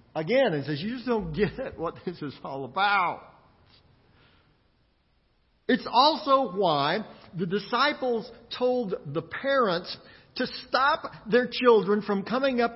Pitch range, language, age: 185-245 Hz, English, 50-69